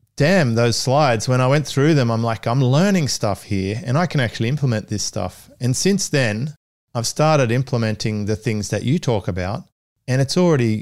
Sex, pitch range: male, 105-130 Hz